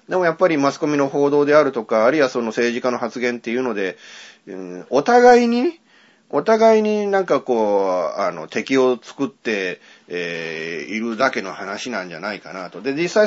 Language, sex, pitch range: Japanese, male, 120-175 Hz